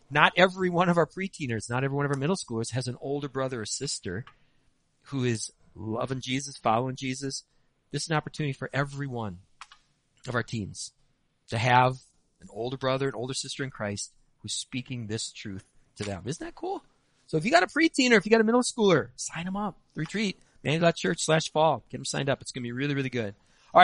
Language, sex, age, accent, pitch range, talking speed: English, male, 40-59, American, 125-175 Hz, 215 wpm